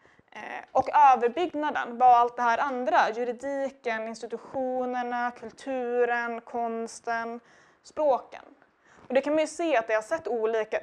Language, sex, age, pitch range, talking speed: Swedish, female, 20-39, 210-255 Hz, 125 wpm